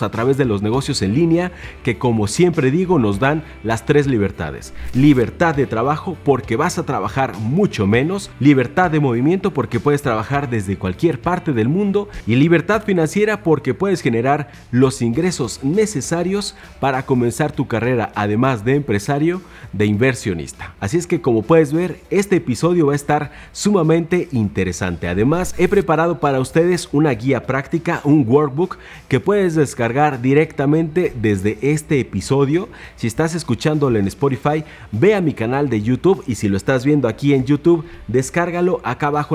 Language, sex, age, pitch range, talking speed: Spanish, male, 40-59, 110-160 Hz, 160 wpm